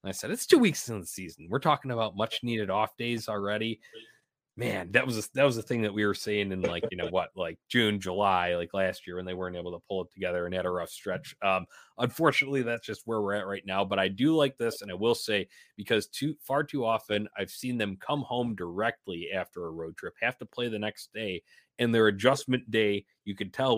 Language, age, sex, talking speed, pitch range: English, 30-49, male, 250 wpm, 95-125 Hz